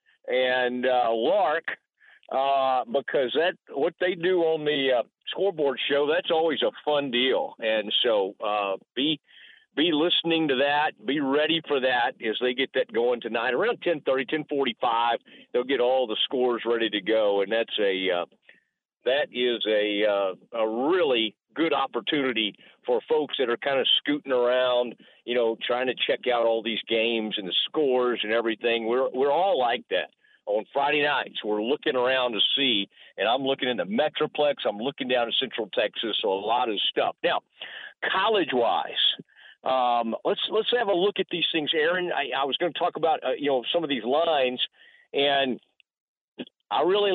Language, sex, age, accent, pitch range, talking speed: English, male, 50-69, American, 115-155 Hz, 185 wpm